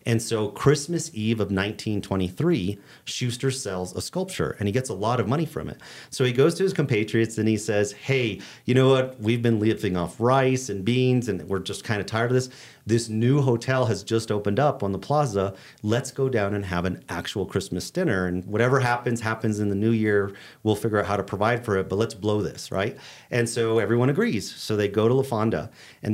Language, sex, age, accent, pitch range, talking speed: English, male, 40-59, American, 100-125 Hz, 225 wpm